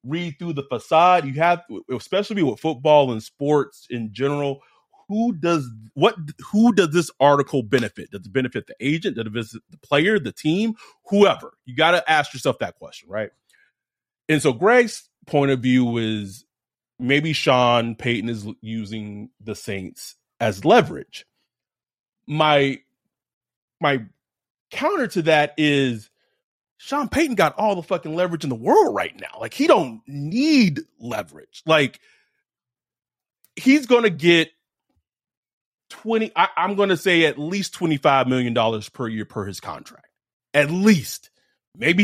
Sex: male